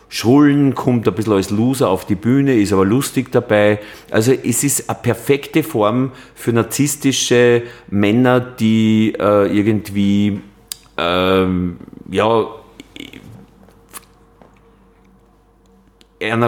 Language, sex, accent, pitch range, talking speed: German, male, Swiss, 100-125 Hz, 95 wpm